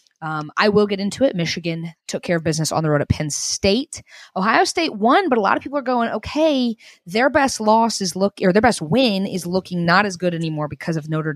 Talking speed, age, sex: 240 wpm, 20-39, female